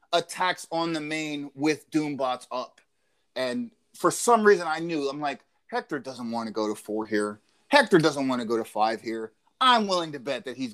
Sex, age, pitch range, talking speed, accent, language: male, 30-49, 125-205 Hz, 205 wpm, American, English